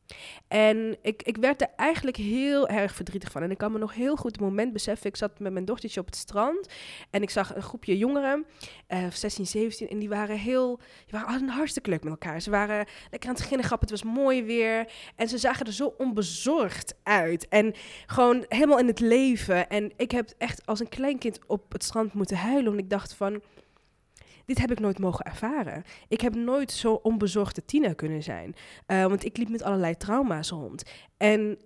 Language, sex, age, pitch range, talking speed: Dutch, female, 20-39, 190-240 Hz, 210 wpm